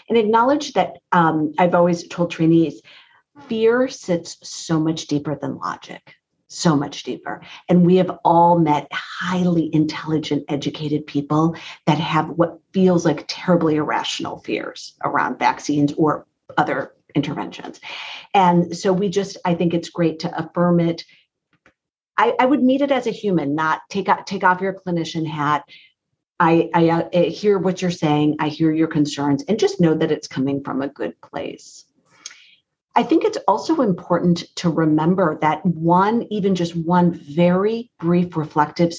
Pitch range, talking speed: 155-180 Hz, 155 wpm